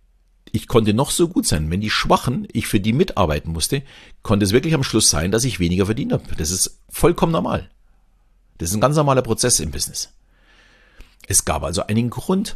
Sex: male